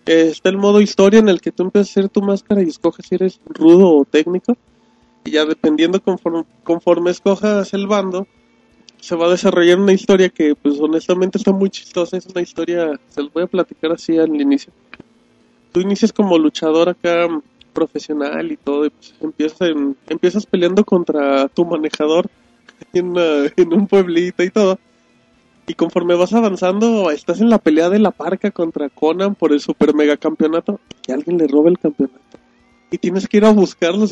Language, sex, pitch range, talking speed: Spanish, male, 160-205 Hz, 180 wpm